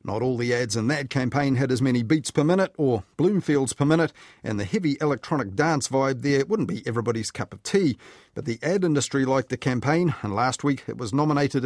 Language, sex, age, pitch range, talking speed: English, male, 40-59, 120-150 Hz, 220 wpm